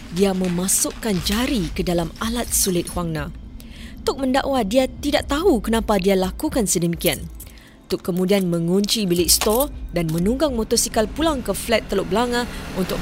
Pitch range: 180-230 Hz